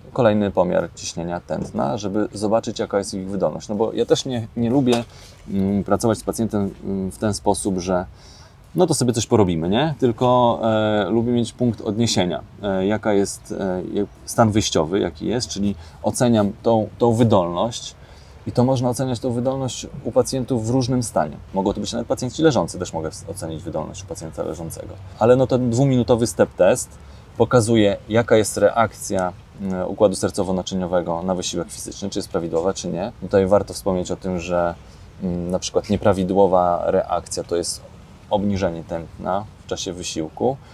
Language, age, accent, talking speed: Polish, 20-39, native, 165 wpm